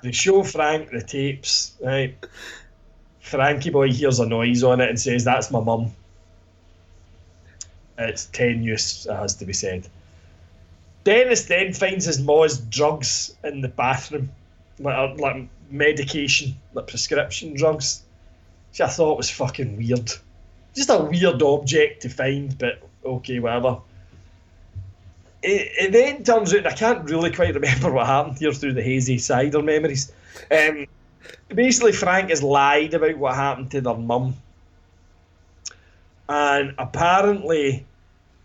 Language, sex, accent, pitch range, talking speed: English, male, British, 95-145 Hz, 135 wpm